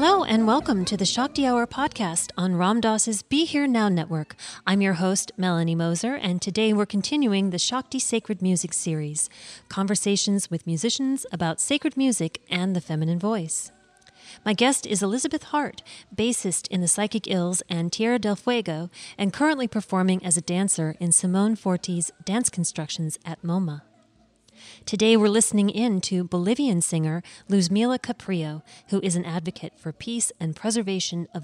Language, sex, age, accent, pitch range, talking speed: English, female, 30-49, American, 175-225 Hz, 160 wpm